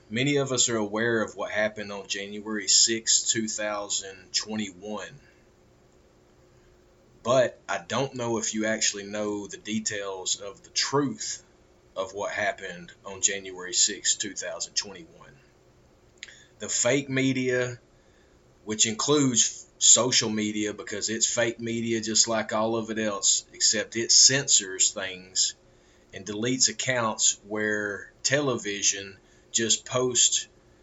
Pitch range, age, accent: 95-120 Hz, 30-49, American